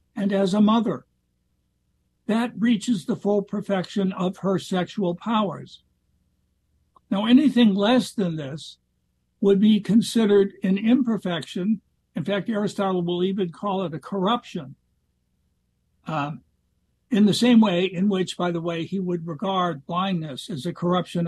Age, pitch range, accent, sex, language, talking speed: 60-79, 150-200 Hz, American, male, English, 140 wpm